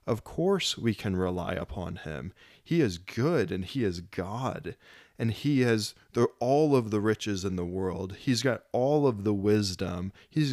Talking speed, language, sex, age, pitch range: 175 wpm, English, male, 20-39, 95-125 Hz